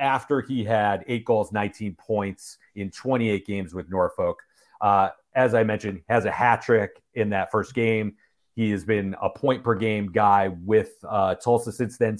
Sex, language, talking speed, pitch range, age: male, English, 175 wpm, 100-120 Hz, 40-59